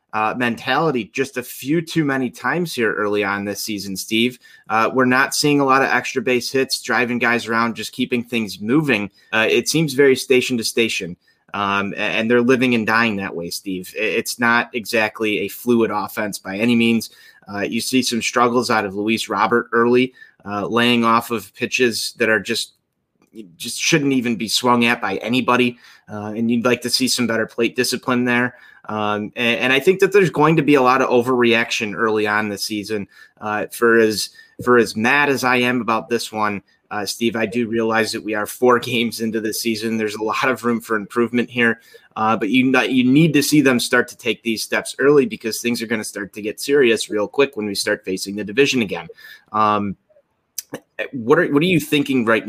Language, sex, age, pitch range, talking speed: English, male, 30-49, 110-125 Hz, 210 wpm